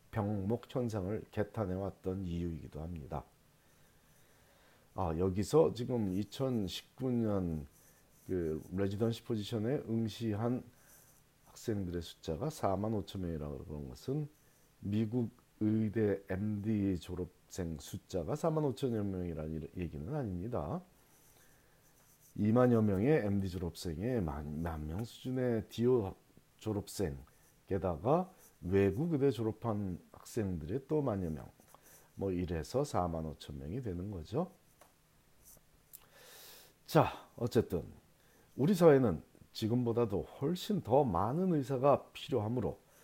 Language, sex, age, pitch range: Korean, male, 40-59, 90-120 Hz